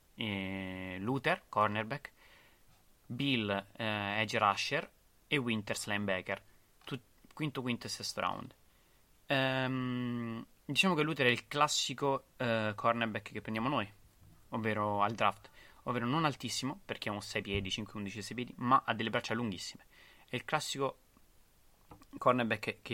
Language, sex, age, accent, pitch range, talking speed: Italian, male, 20-39, native, 100-120 Hz, 135 wpm